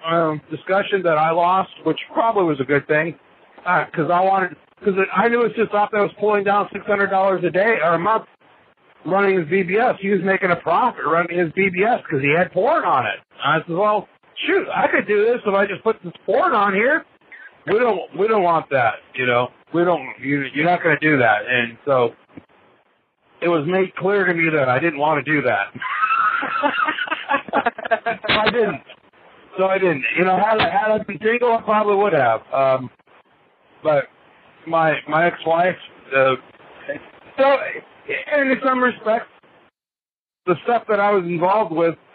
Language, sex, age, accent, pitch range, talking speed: English, male, 60-79, American, 155-205 Hz, 190 wpm